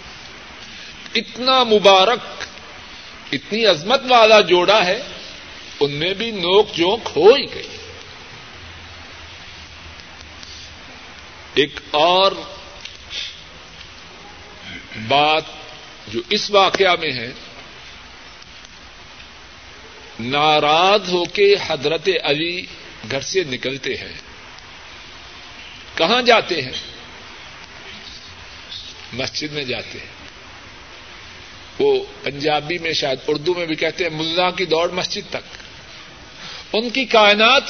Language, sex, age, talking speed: Urdu, male, 60-79, 90 wpm